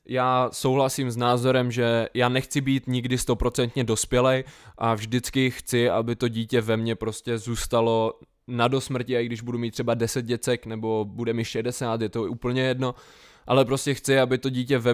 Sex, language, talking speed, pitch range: male, Czech, 185 wpm, 115-130 Hz